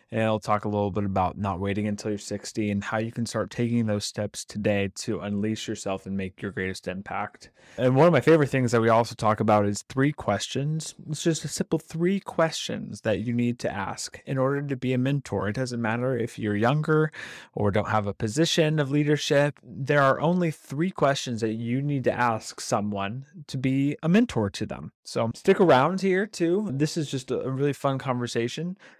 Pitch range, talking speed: 110-140 Hz, 210 wpm